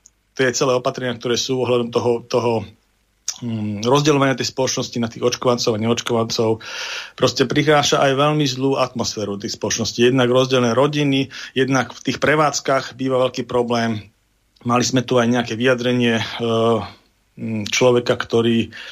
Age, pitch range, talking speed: 40-59, 115-130 Hz, 145 wpm